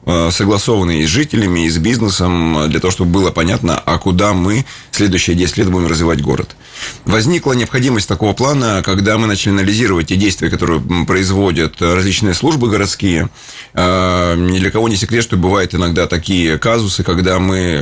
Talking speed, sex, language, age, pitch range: 160 wpm, male, Russian, 30-49, 90-105 Hz